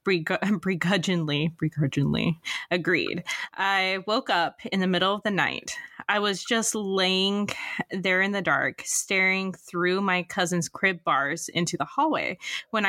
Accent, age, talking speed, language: American, 20-39, 135 wpm, English